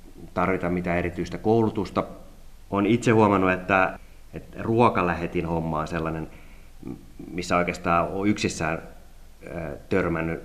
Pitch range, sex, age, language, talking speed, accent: 85-95 Hz, male, 30-49, Finnish, 105 wpm, native